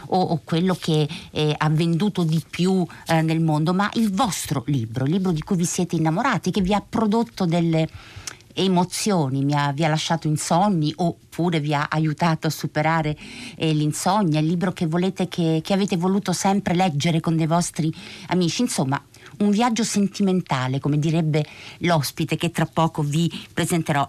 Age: 50-69